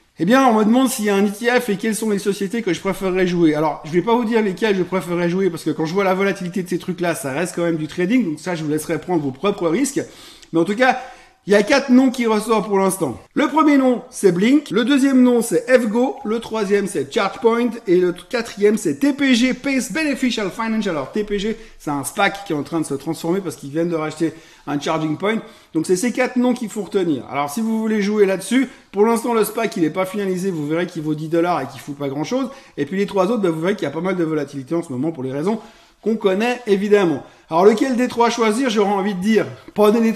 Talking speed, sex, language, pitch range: 270 wpm, male, French, 165-225 Hz